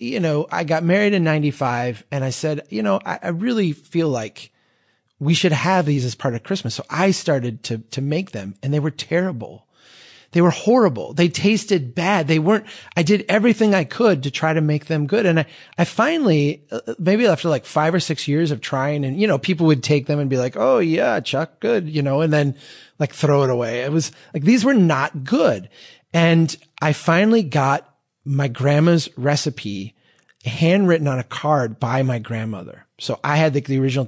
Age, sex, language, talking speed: 30-49, male, English, 205 wpm